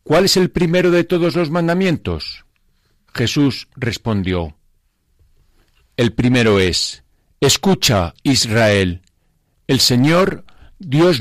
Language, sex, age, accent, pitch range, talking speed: Spanish, male, 50-69, Spanish, 100-150 Hz, 95 wpm